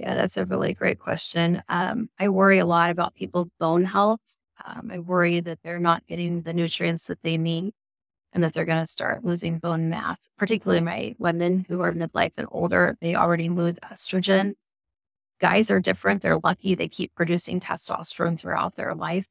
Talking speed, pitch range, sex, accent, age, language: 185 wpm, 170-185 Hz, female, American, 20-39, English